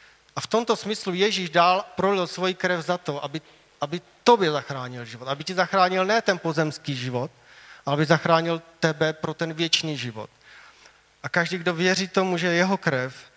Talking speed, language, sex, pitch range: 175 wpm, Czech, male, 150-175 Hz